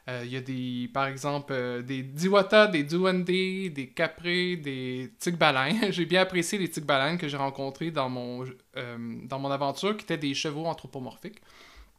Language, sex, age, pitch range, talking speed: French, male, 20-39, 140-170 Hz, 175 wpm